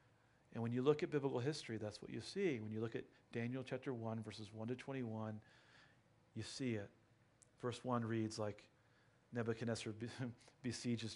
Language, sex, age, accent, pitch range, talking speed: English, male, 40-59, American, 110-125 Hz, 165 wpm